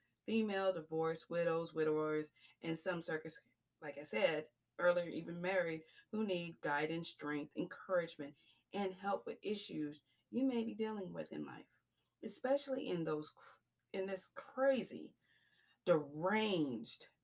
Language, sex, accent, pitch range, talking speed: English, female, American, 160-205 Hz, 120 wpm